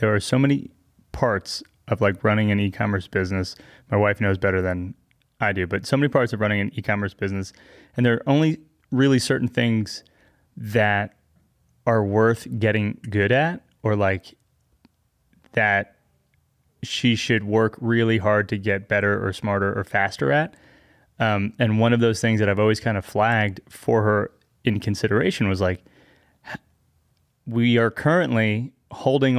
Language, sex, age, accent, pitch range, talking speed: English, male, 20-39, American, 100-120 Hz, 160 wpm